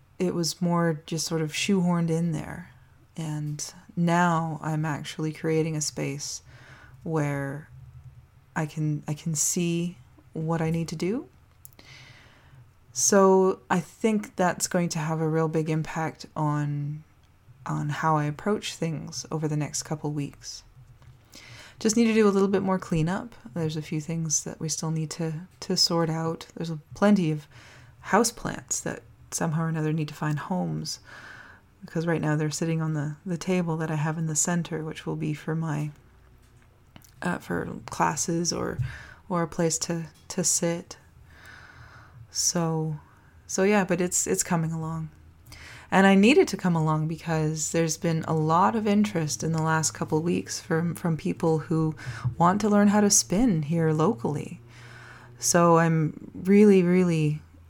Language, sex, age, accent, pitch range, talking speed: English, female, 20-39, American, 150-175 Hz, 160 wpm